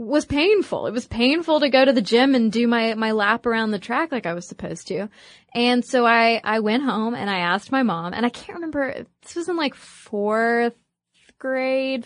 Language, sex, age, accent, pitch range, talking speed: English, female, 20-39, American, 205-265 Hz, 220 wpm